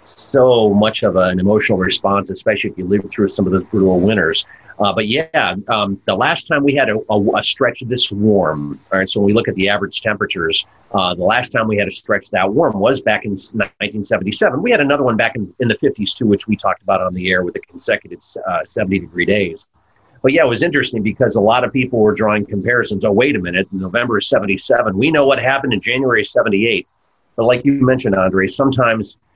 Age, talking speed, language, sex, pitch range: 40-59, 225 wpm, English, male, 95-115 Hz